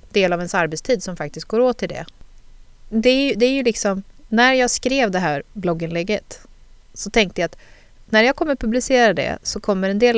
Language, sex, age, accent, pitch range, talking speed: Swedish, female, 30-49, native, 165-220 Hz, 205 wpm